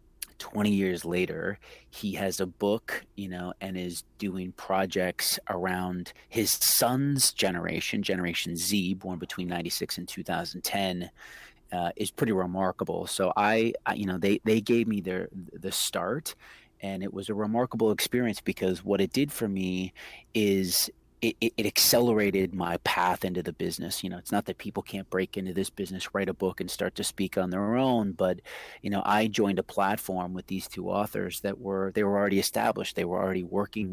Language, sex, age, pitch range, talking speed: English, male, 30-49, 90-100 Hz, 185 wpm